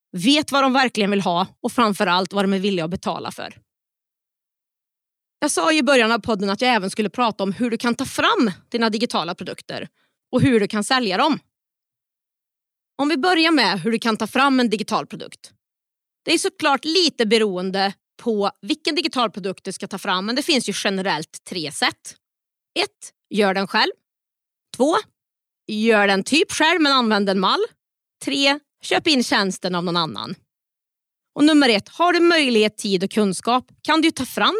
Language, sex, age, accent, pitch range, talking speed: Swedish, female, 30-49, native, 205-285 Hz, 185 wpm